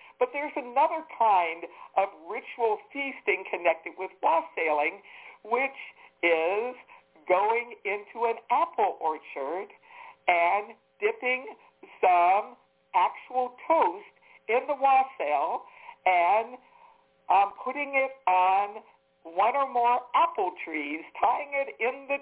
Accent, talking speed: American, 105 wpm